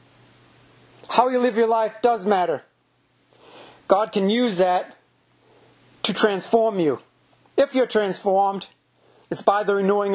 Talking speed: 125 wpm